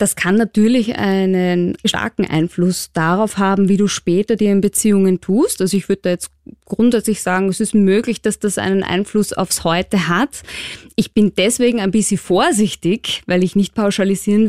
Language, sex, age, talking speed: German, female, 20-39, 175 wpm